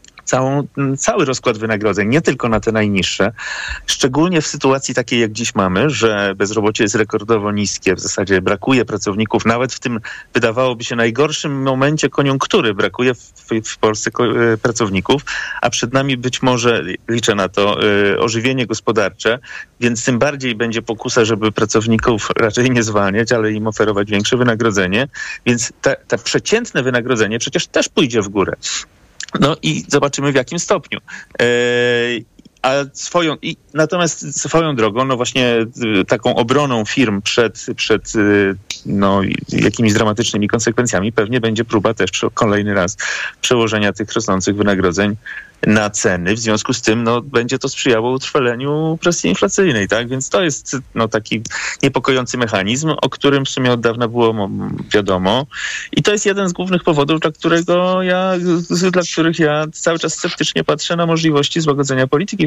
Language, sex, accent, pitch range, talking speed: Polish, male, native, 110-140 Hz, 150 wpm